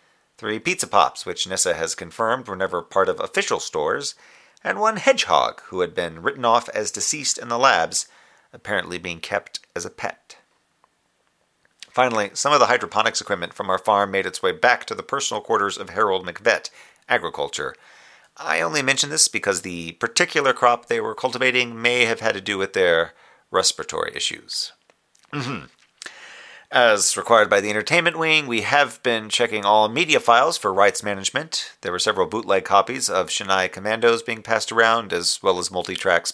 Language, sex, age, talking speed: English, male, 40-59, 175 wpm